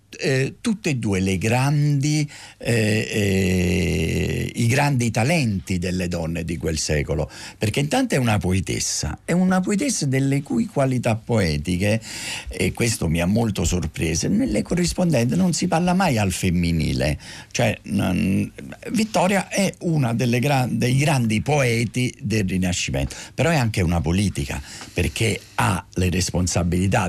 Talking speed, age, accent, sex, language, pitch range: 130 wpm, 50-69, native, male, Italian, 85-135 Hz